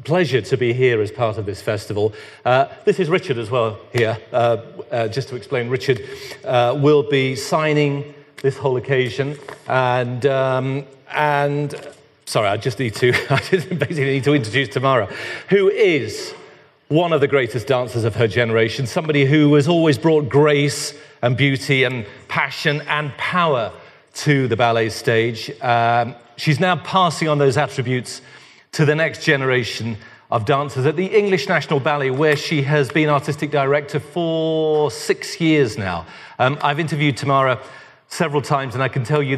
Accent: British